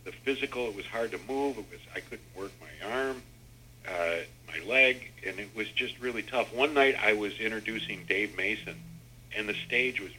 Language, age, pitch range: English, 50-69, 100-125 Hz